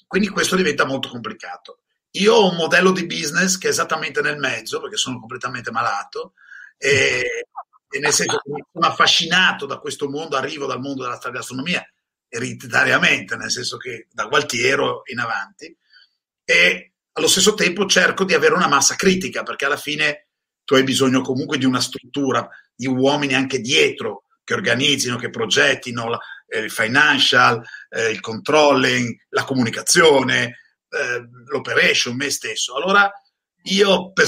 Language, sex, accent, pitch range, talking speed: Italian, male, native, 135-200 Hz, 150 wpm